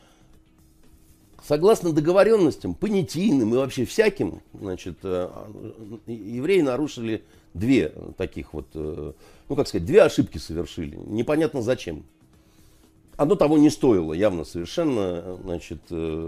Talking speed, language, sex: 100 wpm, Russian, male